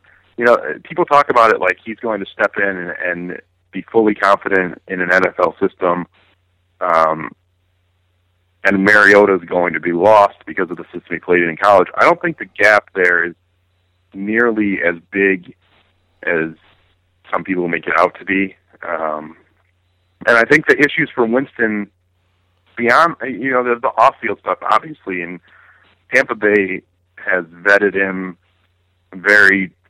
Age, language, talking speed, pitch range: 30-49, English, 155 wpm, 90-105 Hz